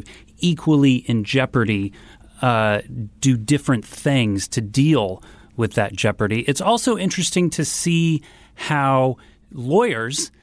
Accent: American